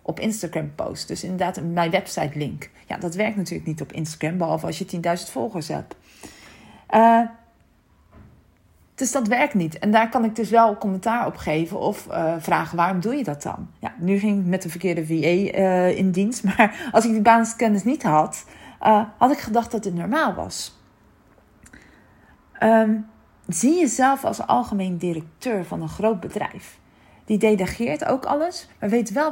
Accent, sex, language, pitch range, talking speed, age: Dutch, female, Dutch, 185-245 Hz, 175 wpm, 40-59